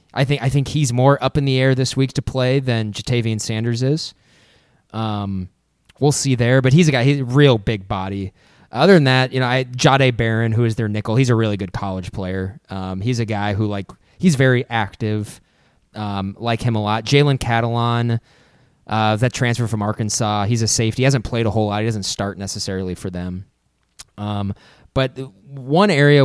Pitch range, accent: 105-135 Hz, American